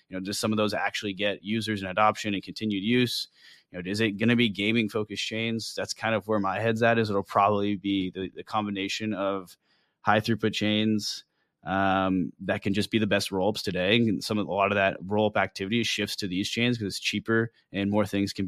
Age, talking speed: 20-39, 230 wpm